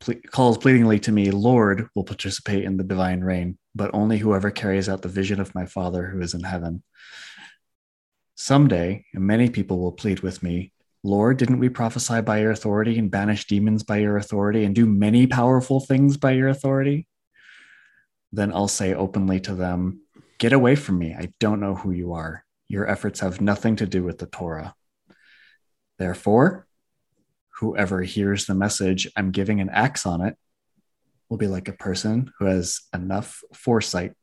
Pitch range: 95-110 Hz